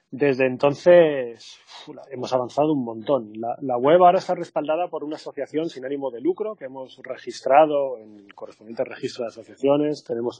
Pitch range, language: 130-165 Hz, Spanish